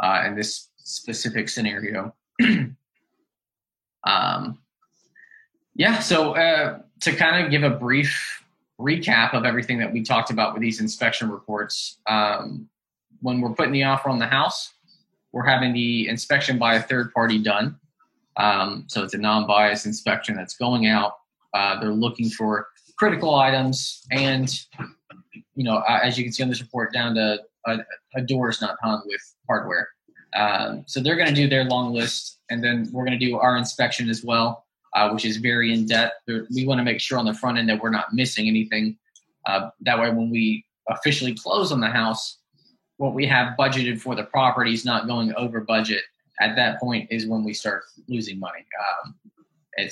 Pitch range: 110-135 Hz